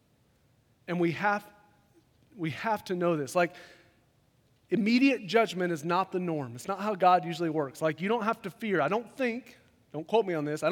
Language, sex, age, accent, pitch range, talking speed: English, male, 30-49, American, 145-195 Hz, 200 wpm